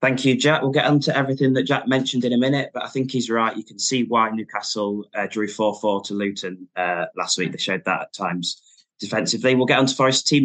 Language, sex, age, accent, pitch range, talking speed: English, male, 20-39, British, 100-125 Hz, 245 wpm